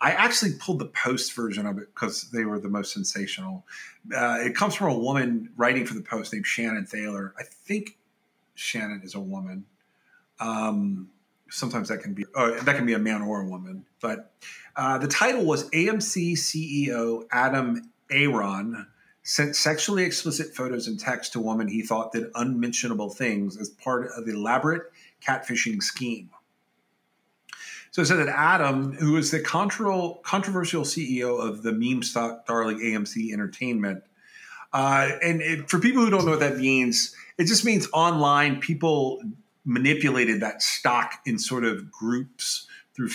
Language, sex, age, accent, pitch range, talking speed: English, male, 30-49, American, 110-165 Hz, 160 wpm